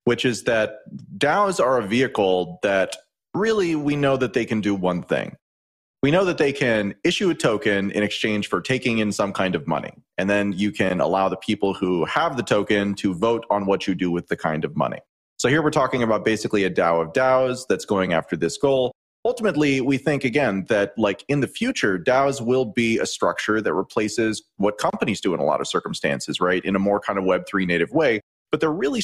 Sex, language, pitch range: male, English, 95-125 Hz